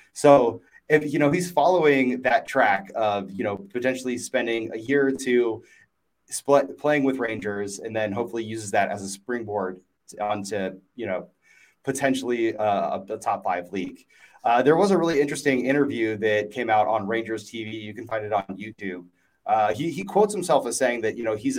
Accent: American